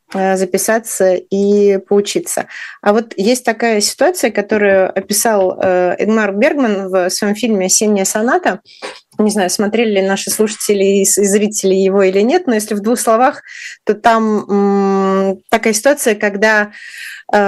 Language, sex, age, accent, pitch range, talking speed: Russian, female, 20-39, native, 195-225 Hz, 130 wpm